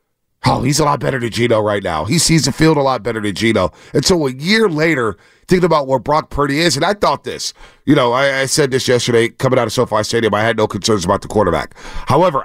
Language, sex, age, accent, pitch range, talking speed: English, male, 40-59, American, 120-165 Hz, 255 wpm